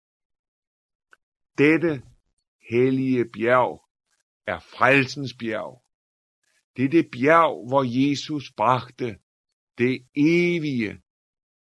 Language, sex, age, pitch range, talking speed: Danish, male, 50-69, 105-140 Hz, 80 wpm